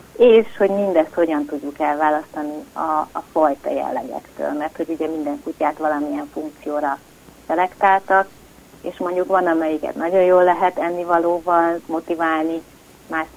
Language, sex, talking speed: Hungarian, female, 125 wpm